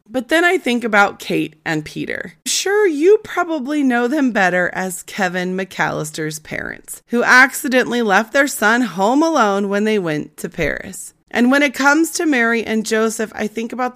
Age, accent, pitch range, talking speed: 30-49, American, 175-250 Hz, 175 wpm